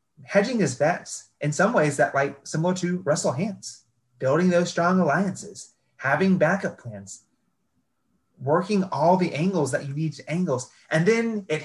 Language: English